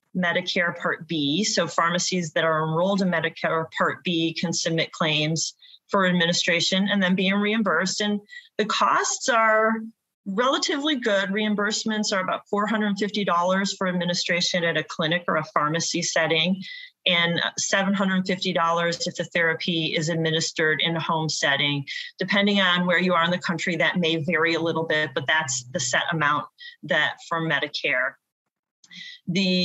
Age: 30-49